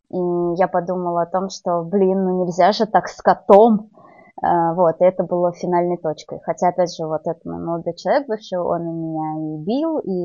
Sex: female